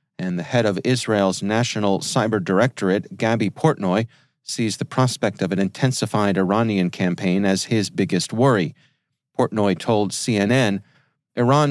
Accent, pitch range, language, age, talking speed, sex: American, 105-140 Hz, English, 40-59, 135 wpm, male